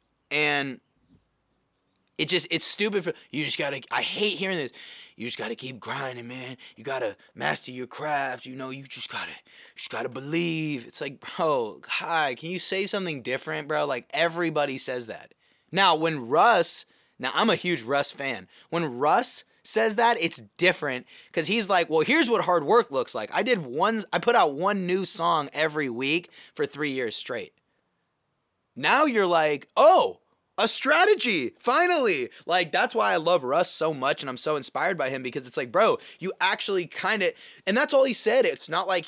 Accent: American